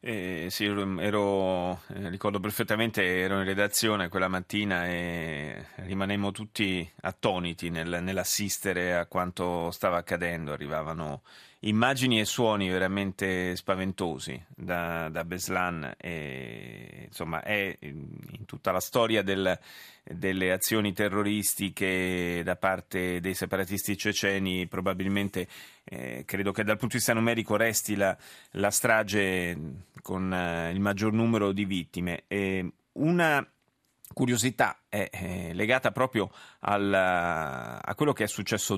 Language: Italian